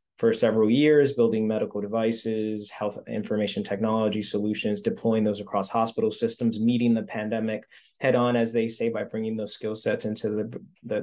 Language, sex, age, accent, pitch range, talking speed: English, male, 20-39, American, 110-140 Hz, 165 wpm